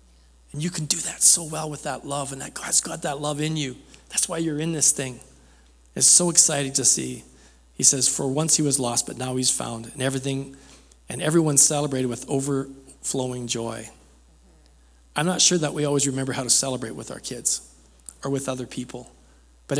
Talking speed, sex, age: 200 wpm, male, 40-59